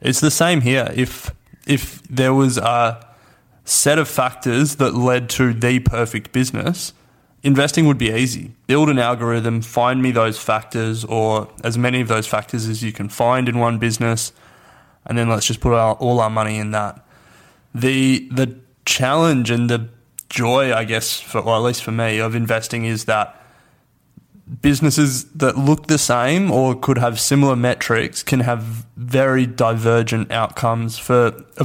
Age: 20-39